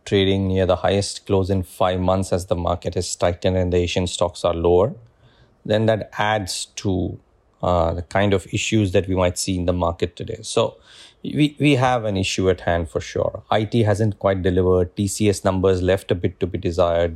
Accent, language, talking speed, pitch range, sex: Indian, English, 205 wpm, 90-110 Hz, male